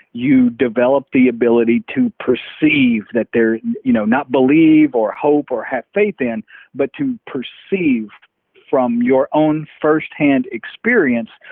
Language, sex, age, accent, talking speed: English, male, 50-69, American, 135 wpm